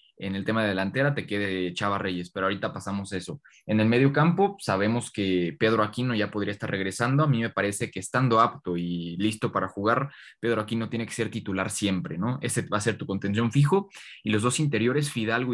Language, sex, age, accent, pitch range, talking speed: Spanish, male, 20-39, Mexican, 100-120 Hz, 215 wpm